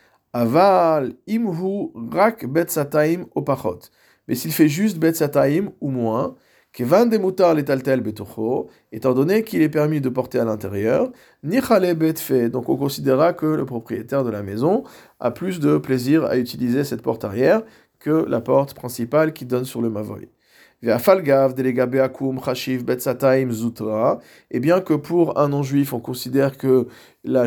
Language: French